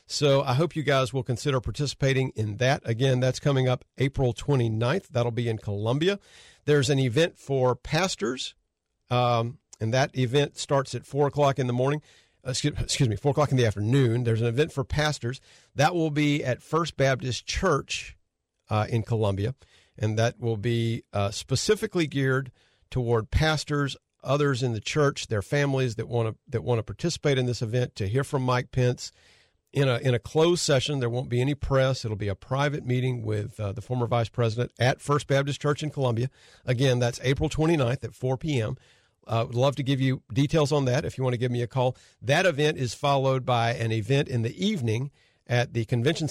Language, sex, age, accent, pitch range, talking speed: English, male, 50-69, American, 115-140 Hz, 200 wpm